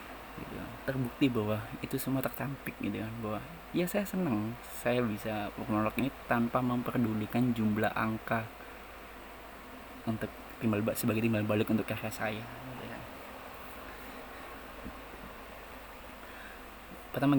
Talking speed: 110 wpm